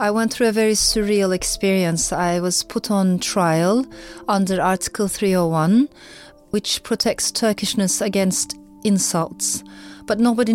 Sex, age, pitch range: female, 30-49, 175-215 Hz